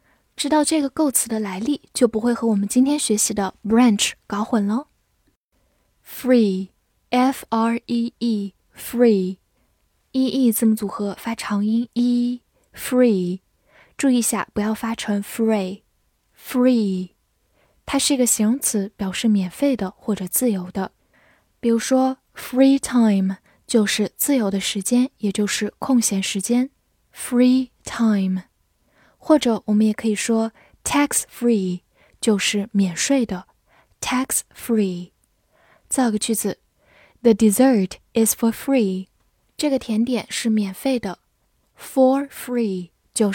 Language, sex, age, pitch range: Chinese, female, 10-29, 205-250 Hz